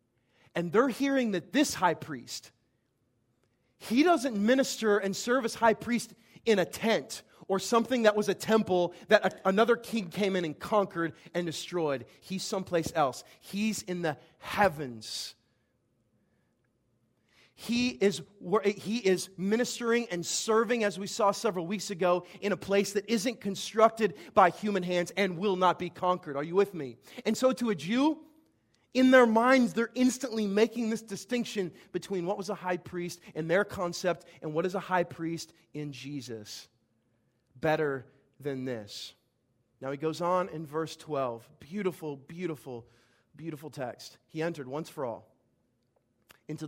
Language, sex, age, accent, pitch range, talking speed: English, male, 30-49, American, 135-205 Hz, 155 wpm